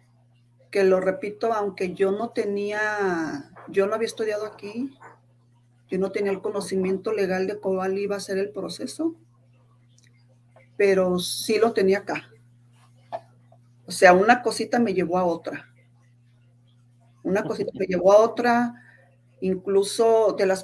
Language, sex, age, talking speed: English, female, 40-59, 135 wpm